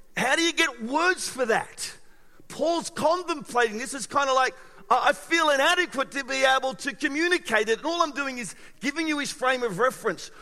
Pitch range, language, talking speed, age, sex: 200-270 Hz, English, 195 wpm, 50-69, male